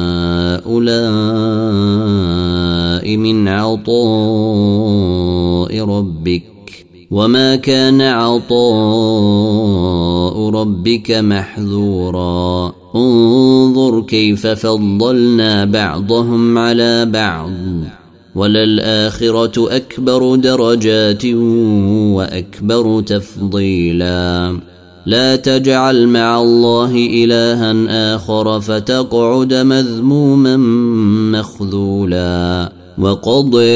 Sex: male